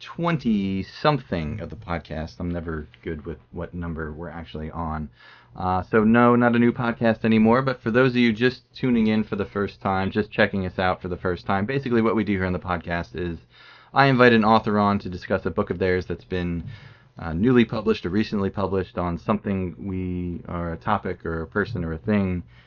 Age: 30-49